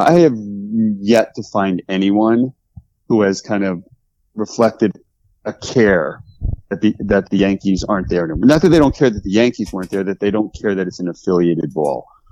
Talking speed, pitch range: 190 wpm, 95-120 Hz